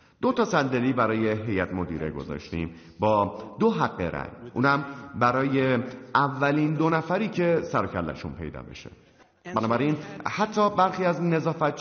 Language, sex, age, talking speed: Persian, male, 50-69, 125 wpm